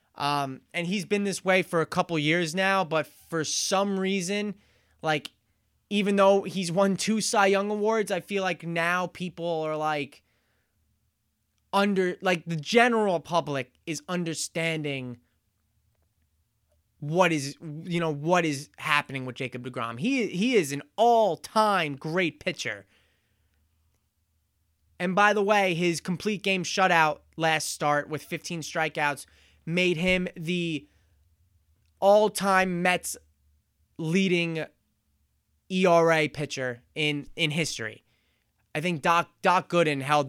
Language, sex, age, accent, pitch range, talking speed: English, male, 20-39, American, 125-180 Hz, 125 wpm